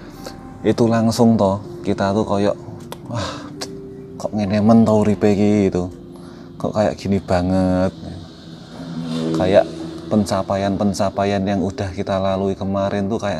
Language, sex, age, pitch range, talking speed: Indonesian, male, 20-39, 90-115 Hz, 105 wpm